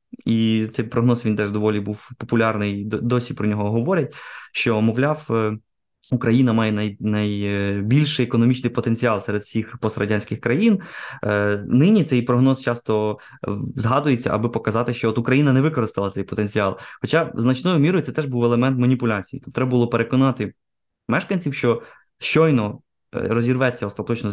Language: Ukrainian